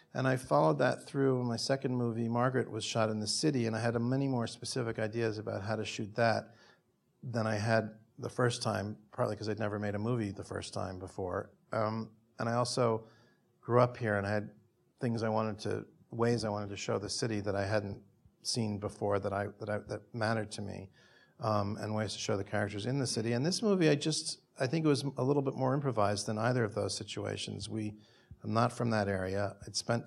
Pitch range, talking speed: 105-120 Hz, 230 wpm